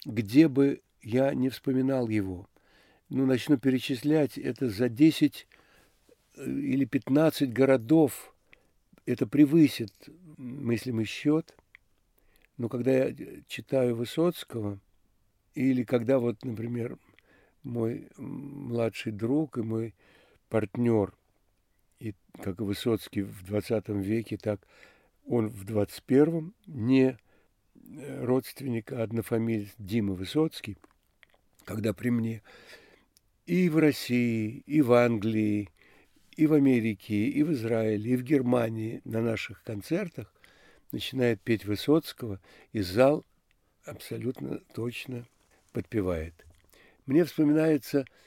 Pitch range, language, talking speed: 110-135 Hz, Russian, 100 wpm